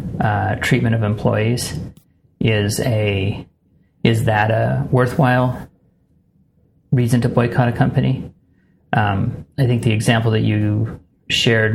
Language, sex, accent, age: English, male, American, 30-49